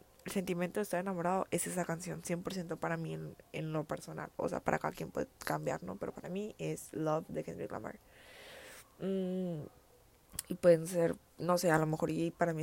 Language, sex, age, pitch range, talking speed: Spanish, female, 20-39, 155-185 Hz, 205 wpm